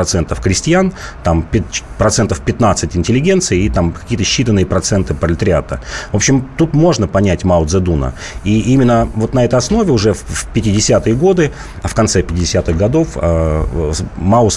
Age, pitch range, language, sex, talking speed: 30-49, 85-115 Hz, Russian, male, 140 wpm